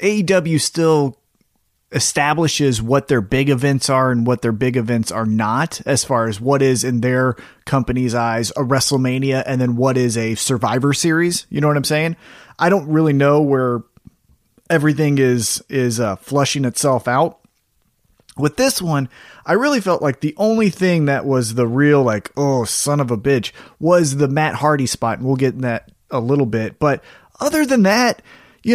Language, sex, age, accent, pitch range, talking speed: English, male, 30-49, American, 125-160 Hz, 185 wpm